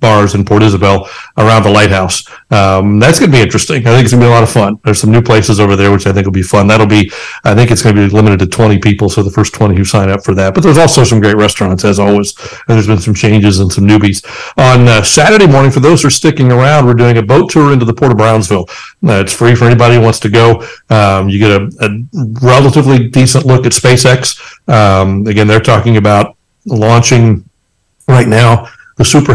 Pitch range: 100-120 Hz